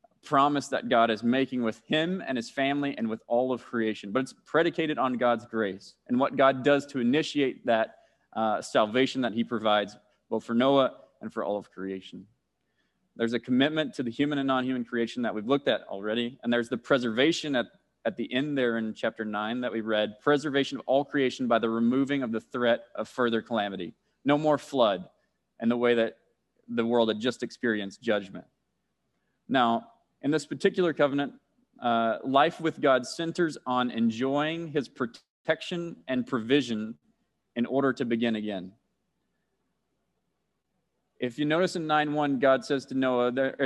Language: English